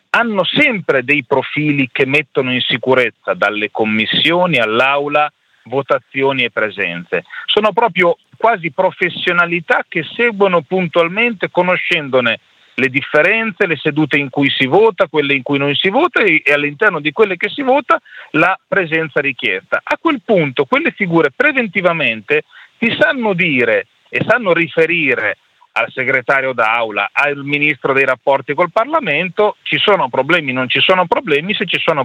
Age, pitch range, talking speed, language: 40-59, 140-230 Hz, 145 wpm, Italian